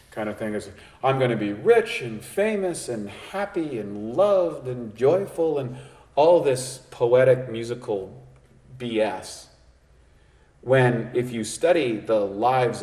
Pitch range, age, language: 115-165 Hz, 40-59, English